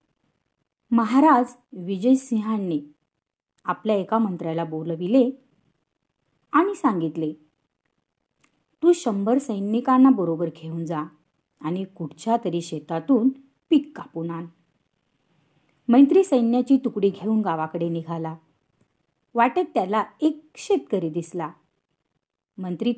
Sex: female